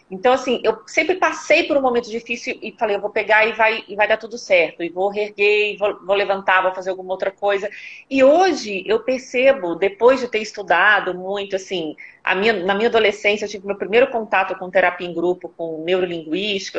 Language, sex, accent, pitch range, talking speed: Portuguese, female, Brazilian, 180-235 Hz, 210 wpm